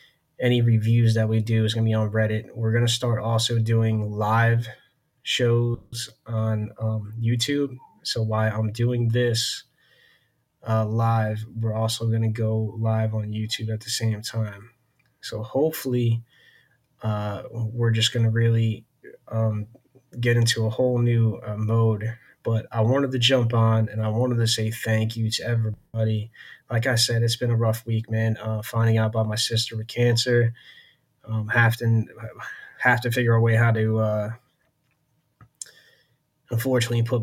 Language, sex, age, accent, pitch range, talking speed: English, male, 20-39, American, 110-120 Hz, 165 wpm